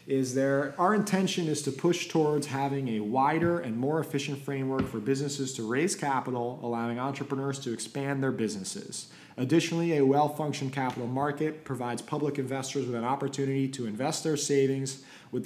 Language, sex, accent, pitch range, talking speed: English, male, American, 120-140 Hz, 165 wpm